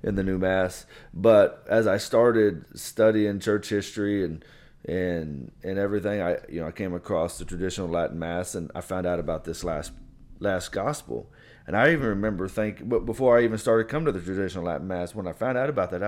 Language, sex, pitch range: English, male, 95-120 Hz